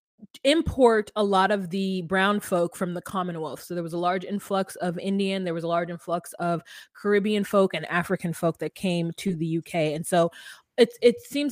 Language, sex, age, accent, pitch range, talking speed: English, female, 20-39, American, 170-215 Hz, 205 wpm